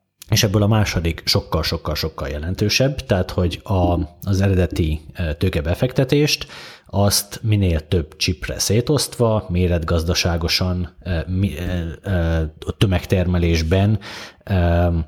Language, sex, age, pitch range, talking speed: Hungarian, male, 30-49, 80-100 Hz, 75 wpm